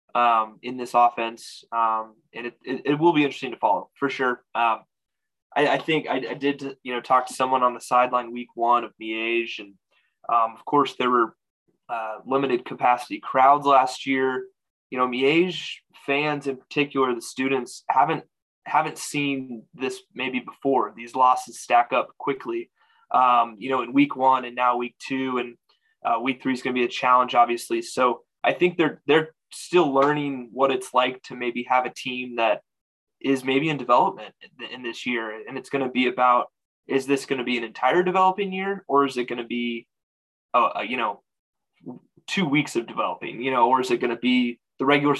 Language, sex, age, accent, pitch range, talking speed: English, male, 20-39, American, 120-140 Hz, 195 wpm